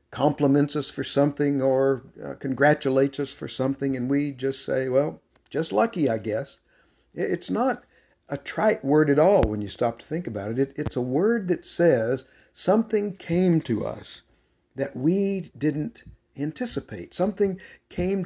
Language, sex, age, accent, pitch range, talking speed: English, male, 60-79, American, 115-160 Hz, 160 wpm